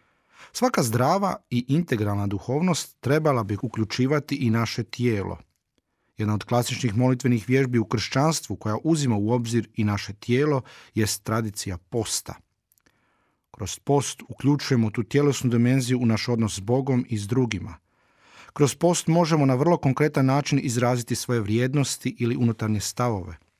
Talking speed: 140 wpm